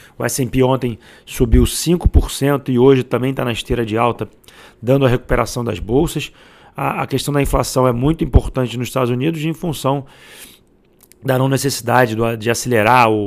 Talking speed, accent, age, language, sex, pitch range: 160 wpm, Brazilian, 40-59, Portuguese, male, 120-135 Hz